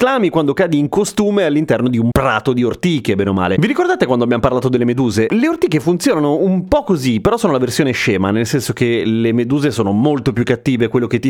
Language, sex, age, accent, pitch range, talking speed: Italian, male, 30-49, native, 120-180 Hz, 230 wpm